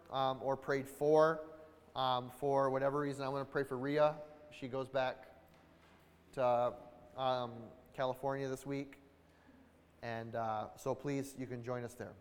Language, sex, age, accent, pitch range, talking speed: English, male, 30-49, American, 115-155 Hz, 150 wpm